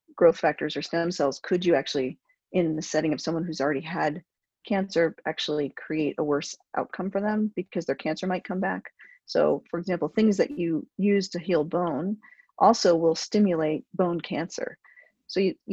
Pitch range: 155-190 Hz